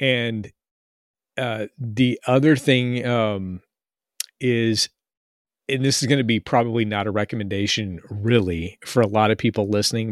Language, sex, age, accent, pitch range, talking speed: English, male, 40-59, American, 110-125 Hz, 140 wpm